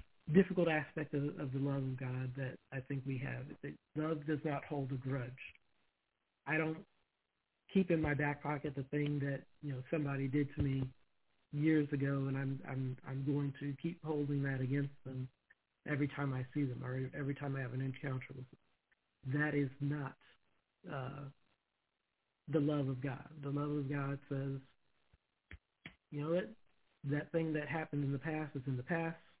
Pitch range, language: 135-150 Hz, English